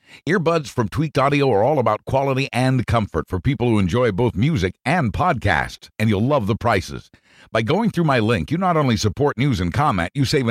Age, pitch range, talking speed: 50-69, 115-150 Hz, 210 wpm